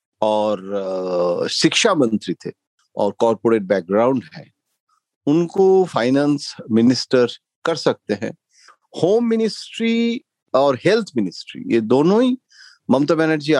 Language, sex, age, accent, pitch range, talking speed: Hindi, male, 50-69, native, 115-170 Hz, 105 wpm